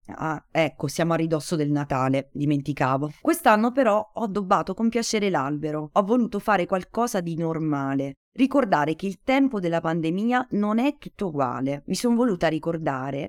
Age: 30-49